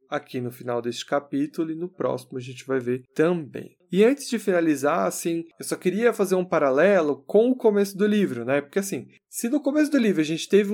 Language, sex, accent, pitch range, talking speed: Portuguese, male, Brazilian, 145-195 Hz, 225 wpm